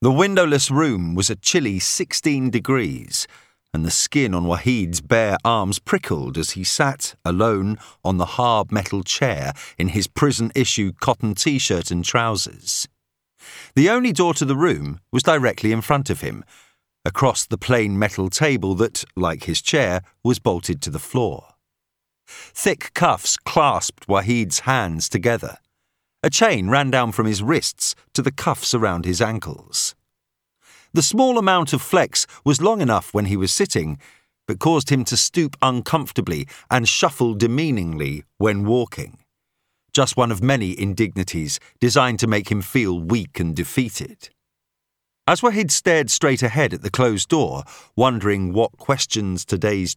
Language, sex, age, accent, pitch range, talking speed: English, male, 50-69, British, 95-135 Hz, 155 wpm